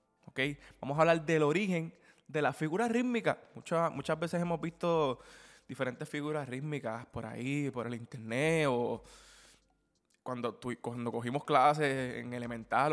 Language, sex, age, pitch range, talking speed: Spanish, male, 20-39, 130-165 Hz, 145 wpm